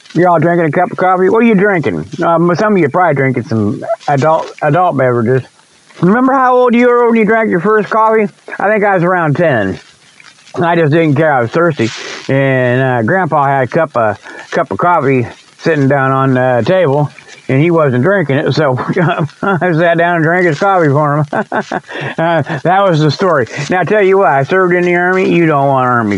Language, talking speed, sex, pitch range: English, 215 wpm, male, 140-180 Hz